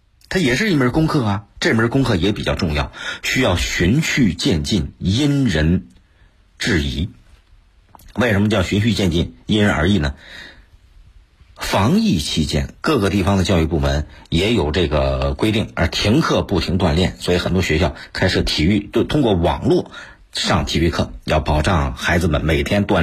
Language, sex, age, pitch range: Chinese, male, 50-69, 80-120 Hz